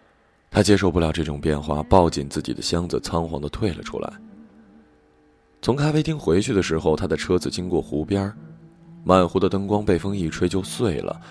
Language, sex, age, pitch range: Chinese, male, 20-39, 80-115 Hz